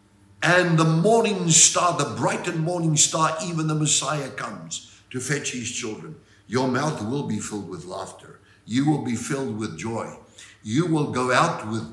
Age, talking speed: 60-79, 175 wpm